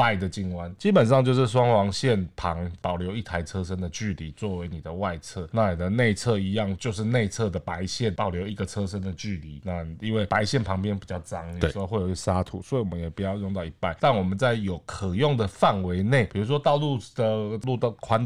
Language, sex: Chinese, male